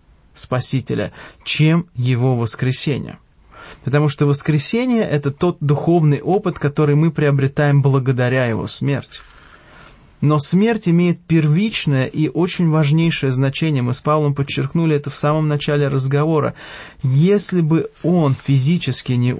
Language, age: English, 20-39